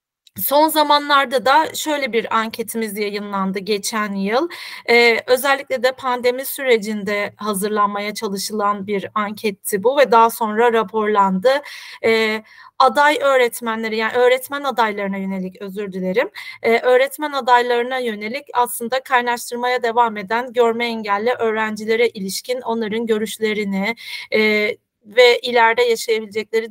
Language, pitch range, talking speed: Turkish, 215-265 Hz, 110 wpm